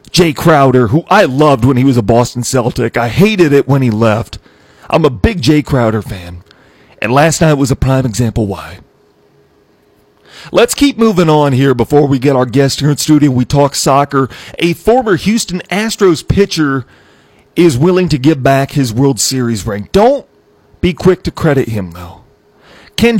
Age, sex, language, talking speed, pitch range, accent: 40-59, male, English, 180 wpm, 125-155 Hz, American